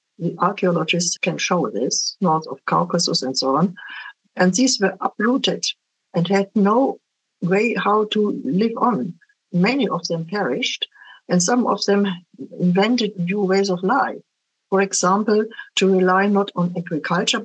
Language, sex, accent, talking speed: English, female, German, 150 wpm